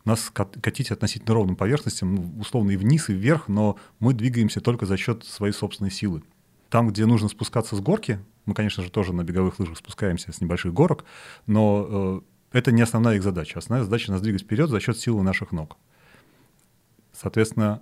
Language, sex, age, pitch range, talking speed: Russian, male, 30-49, 95-115 Hz, 180 wpm